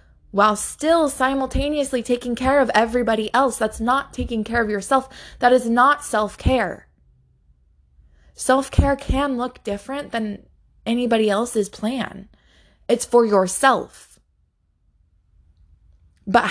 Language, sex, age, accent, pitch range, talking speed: English, female, 20-39, American, 170-245 Hz, 110 wpm